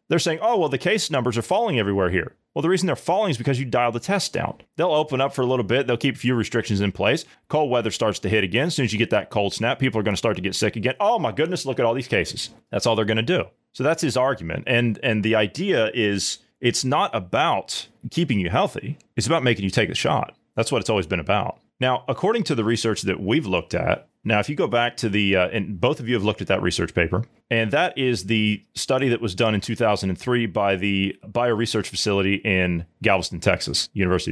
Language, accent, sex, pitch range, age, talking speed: English, American, male, 100-130 Hz, 30-49, 255 wpm